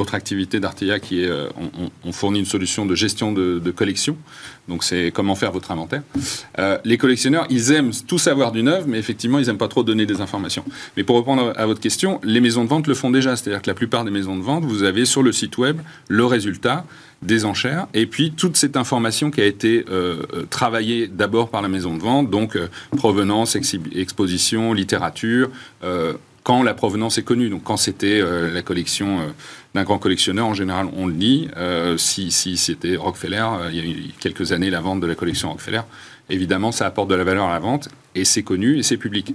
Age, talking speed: 40-59, 220 wpm